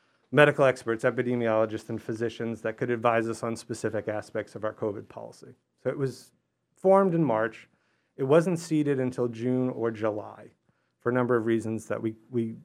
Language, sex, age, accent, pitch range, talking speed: English, male, 30-49, American, 115-135 Hz, 175 wpm